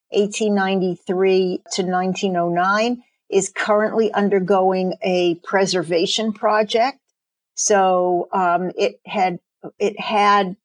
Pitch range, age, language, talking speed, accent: 185-215 Hz, 50-69, English, 85 wpm, American